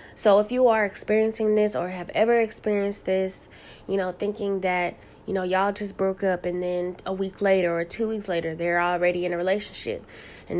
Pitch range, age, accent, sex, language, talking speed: 180-215 Hz, 20-39, American, female, English, 205 wpm